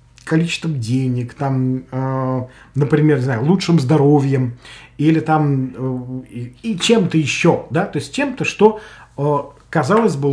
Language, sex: Russian, male